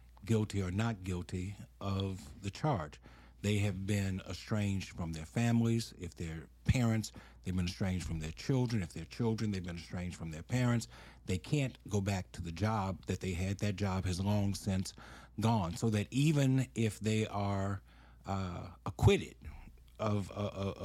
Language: English